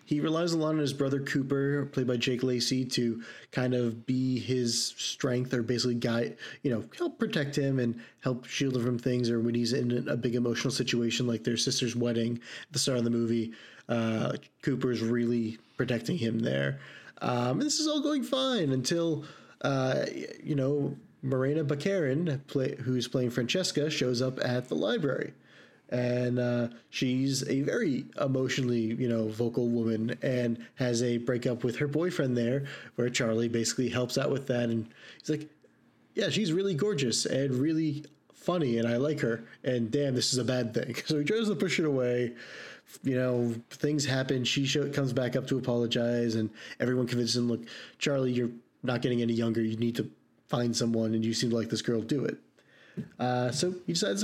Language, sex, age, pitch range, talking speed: English, male, 30-49, 120-140 Hz, 190 wpm